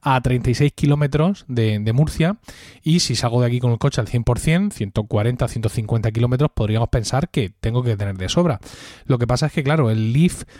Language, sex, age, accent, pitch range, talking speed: Spanish, male, 20-39, Spanish, 115-150 Hz, 200 wpm